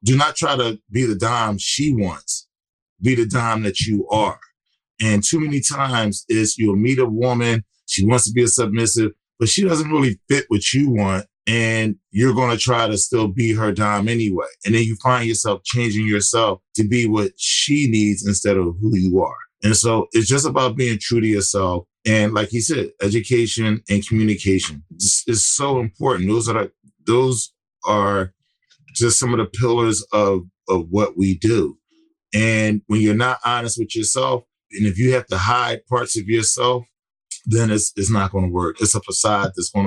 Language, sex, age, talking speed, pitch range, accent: English, male, 20-39, 190 wpm, 100-120 Hz, American